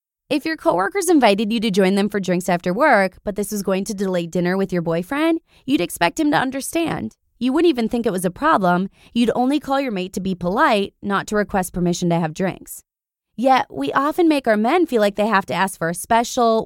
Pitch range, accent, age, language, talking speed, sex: 180-255 Hz, American, 20-39, English, 235 wpm, female